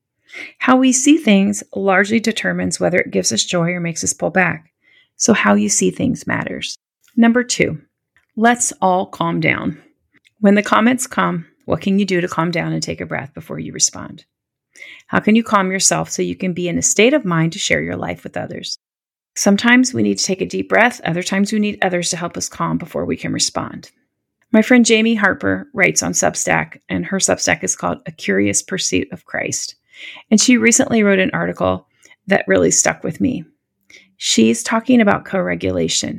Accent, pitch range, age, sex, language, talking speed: American, 165-220 Hz, 30-49, female, English, 195 wpm